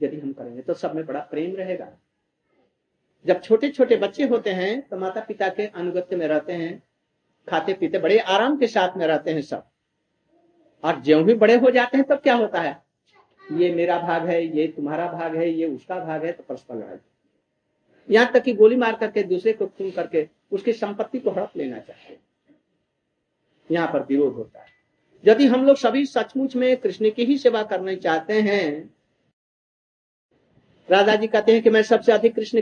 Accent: native